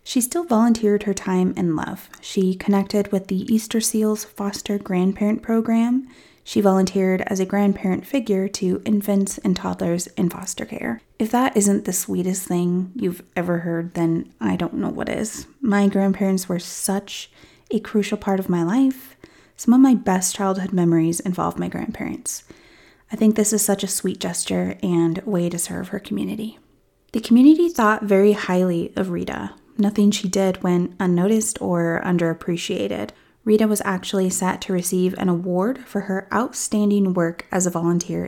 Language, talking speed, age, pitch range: English, 165 wpm, 30-49, 180-215 Hz